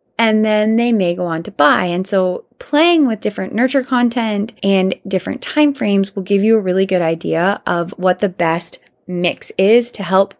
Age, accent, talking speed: 20-39, American, 190 wpm